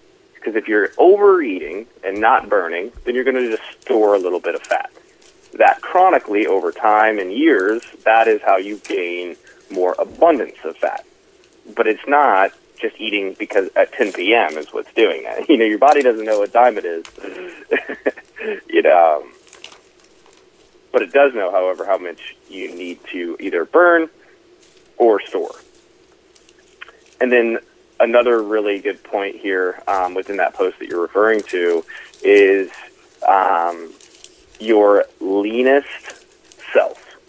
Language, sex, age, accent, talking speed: English, male, 30-49, American, 145 wpm